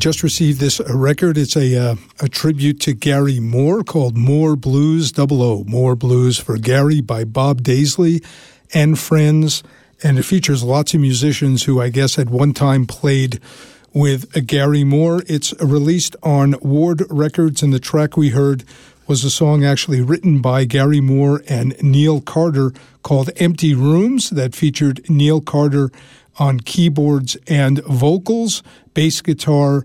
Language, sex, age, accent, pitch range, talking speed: English, male, 50-69, American, 135-155 Hz, 155 wpm